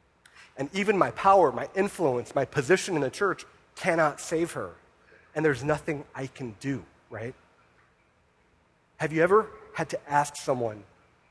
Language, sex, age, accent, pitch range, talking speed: English, male, 30-49, American, 110-155 Hz, 150 wpm